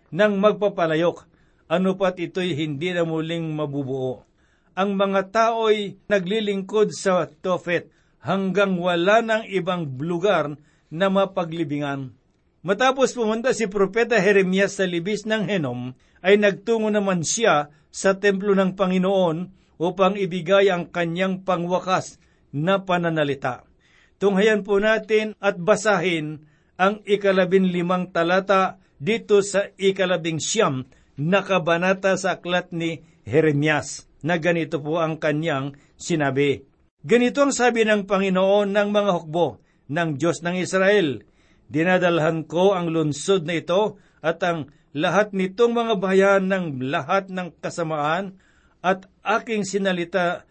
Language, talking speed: Filipino, 120 wpm